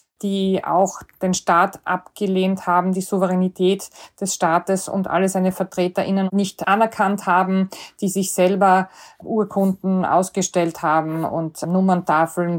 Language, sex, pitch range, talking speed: German, female, 175-200 Hz, 120 wpm